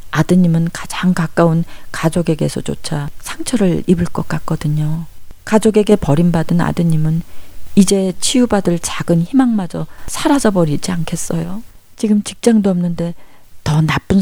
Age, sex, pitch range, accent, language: 40-59, female, 155-190 Hz, native, Korean